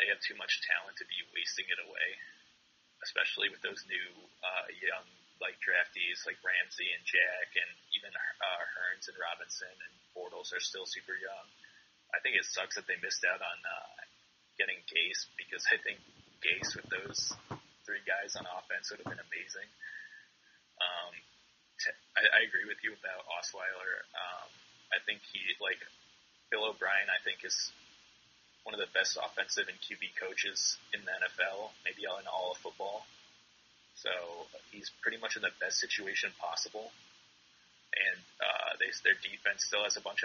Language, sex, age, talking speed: English, male, 20-39, 165 wpm